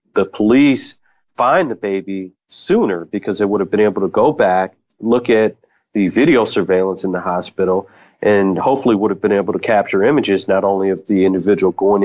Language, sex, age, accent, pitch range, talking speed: English, male, 40-59, American, 95-105 Hz, 190 wpm